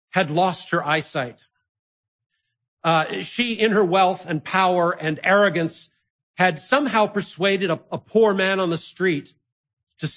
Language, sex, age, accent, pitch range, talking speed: English, male, 50-69, American, 140-185 Hz, 140 wpm